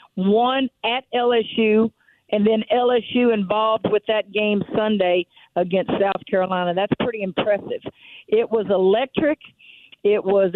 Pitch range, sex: 190-225 Hz, female